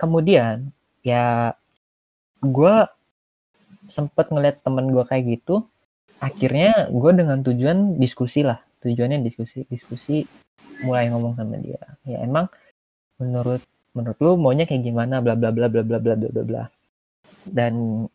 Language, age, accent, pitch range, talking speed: Indonesian, 20-39, native, 120-145 Hz, 130 wpm